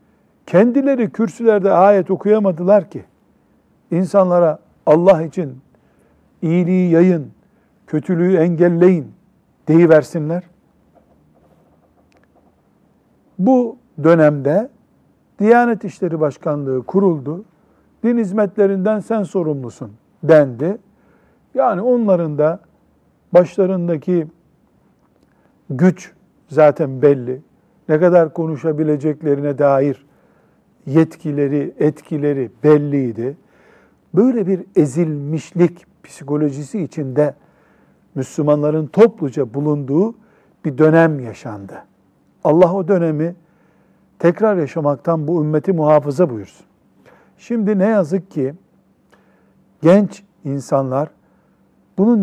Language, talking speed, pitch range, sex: Turkish, 75 wpm, 150-195 Hz, male